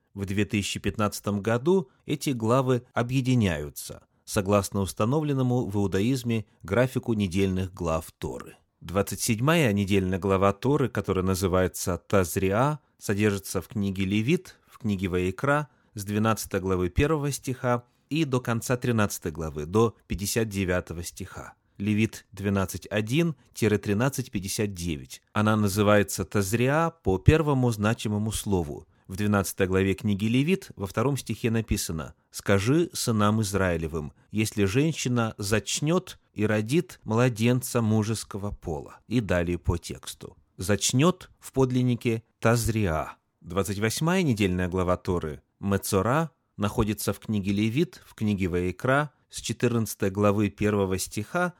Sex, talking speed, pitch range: male, 110 wpm, 95-125 Hz